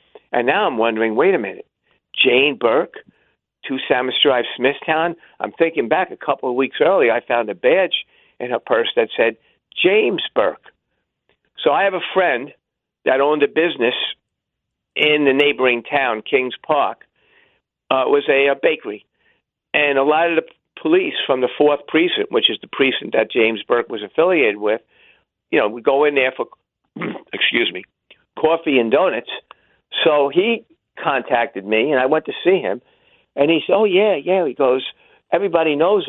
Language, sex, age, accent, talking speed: English, male, 50-69, American, 175 wpm